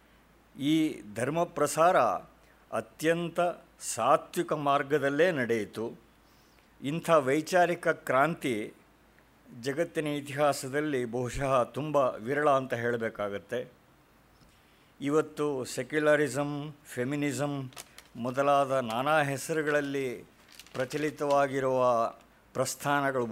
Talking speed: 65 wpm